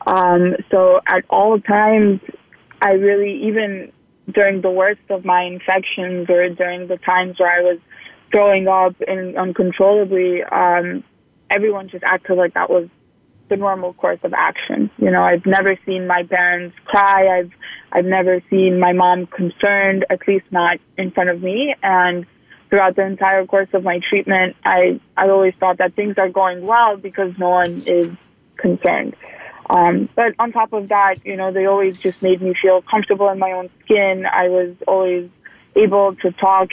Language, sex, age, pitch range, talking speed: English, female, 20-39, 180-195 Hz, 175 wpm